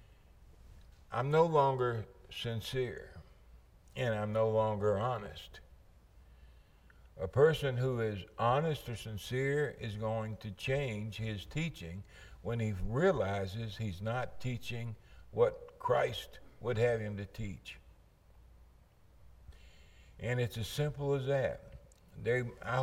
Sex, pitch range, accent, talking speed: male, 95-140 Hz, American, 110 wpm